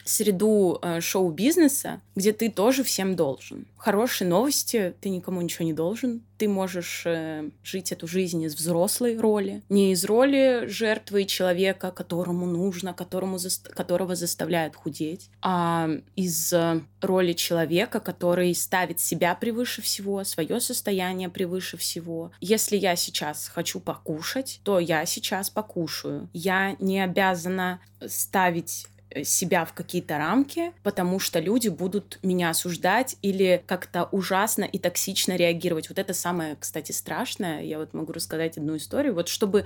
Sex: female